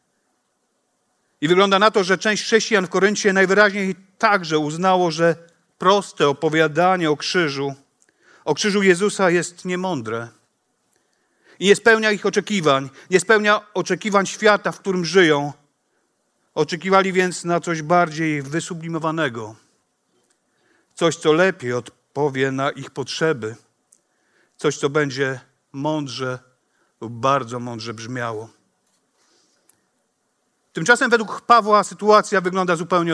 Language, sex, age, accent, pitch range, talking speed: Polish, male, 50-69, native, 145-195 Hz, 110 wpm